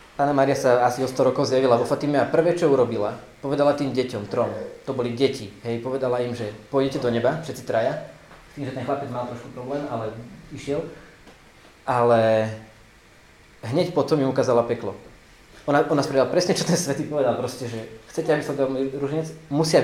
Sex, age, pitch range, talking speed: male, 20-39, 120-145 Hz, 180 wpm